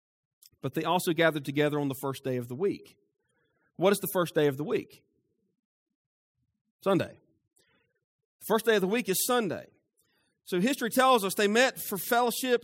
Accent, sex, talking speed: American, male, 175 wpm